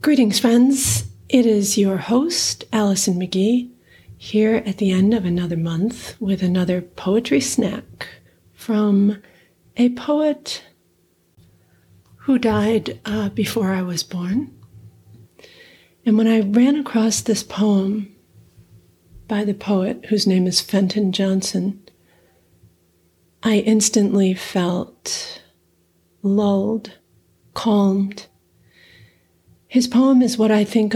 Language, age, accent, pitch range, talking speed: English, 40-59, American, 180-215 Hz, 105 wpm